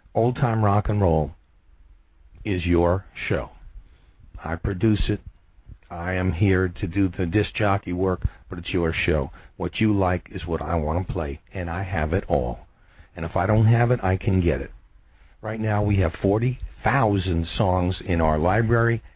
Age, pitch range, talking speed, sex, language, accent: 50-69, 85-105 Hz, 180 wpm, male, English, American